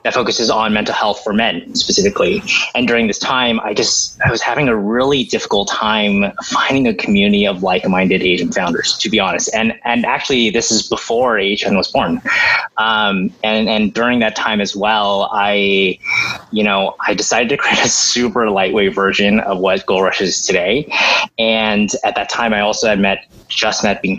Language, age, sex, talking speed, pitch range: English, 20-39, male, 190 wpm, 100-125 Hz